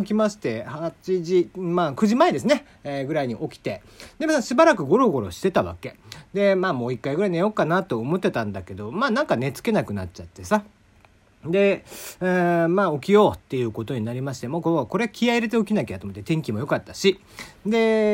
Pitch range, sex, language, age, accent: 120-200 Hz, male, Japanese, 40-59, native